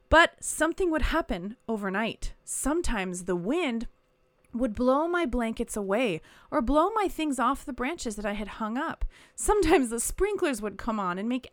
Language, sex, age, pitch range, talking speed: English, female, 30-49, 205-300 Hz, 170 wpm